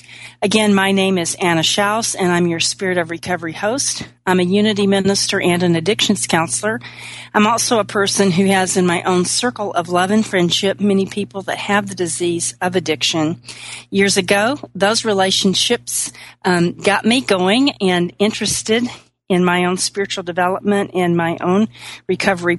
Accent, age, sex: American, 40-59, female